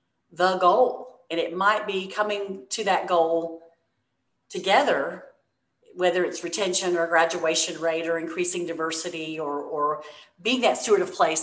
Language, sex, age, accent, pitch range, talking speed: English, female, 40-59, American, 165-220 Hz, 145 wpm